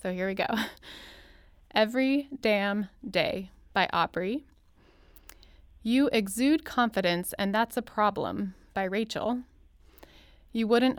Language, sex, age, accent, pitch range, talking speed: English, female, 20-39, American, 180-235 Hz, 110 wpm